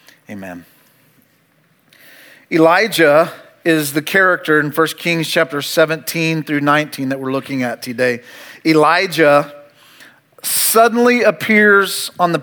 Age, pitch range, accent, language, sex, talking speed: 40-59, 165-210 Hz, American, English, male, 105 wpm